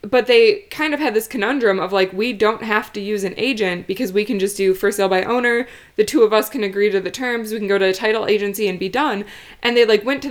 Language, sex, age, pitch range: English, female, 20-39, 200-250 Hz